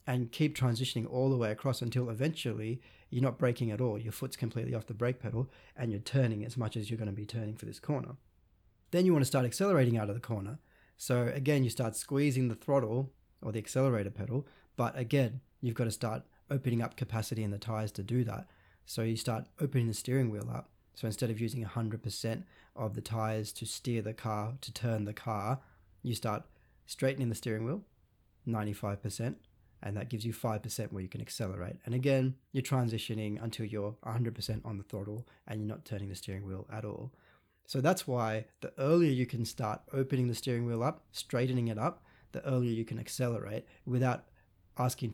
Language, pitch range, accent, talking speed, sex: English, 110-130 Hz, Australian, 205 wpm, male